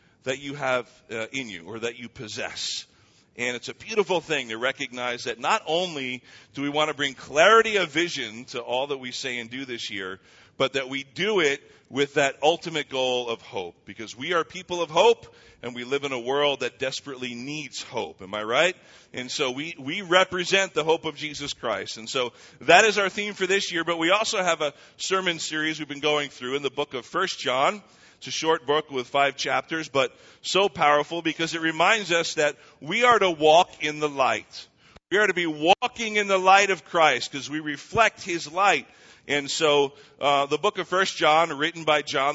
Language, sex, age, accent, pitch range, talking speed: English, male, 40-59, American, 130-175 Hz, 215 wpm